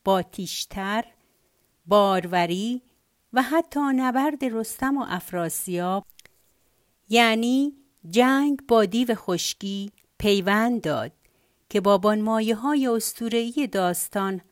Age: 50-69